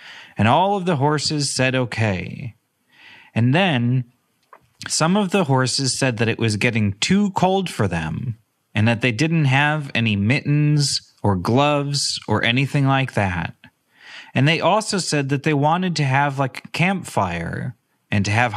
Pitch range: 115-160 Hz